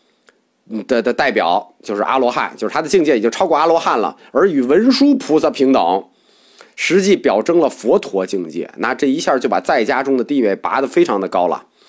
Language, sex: Chinese, male